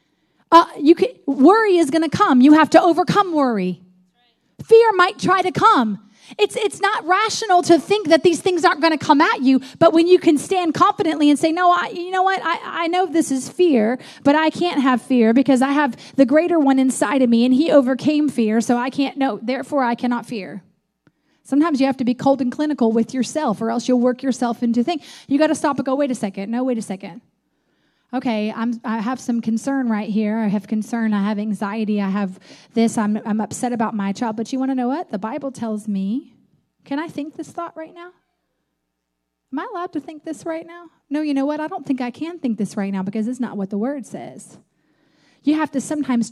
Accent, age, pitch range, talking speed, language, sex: American, 30-49, 220-305 Hz, 235 wpm, English, female